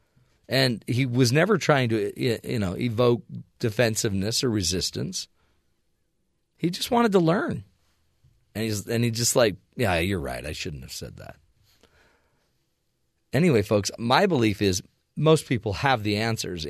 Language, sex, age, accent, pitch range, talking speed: English, male, 40-59, American, 100-145 Hz, 145 wpm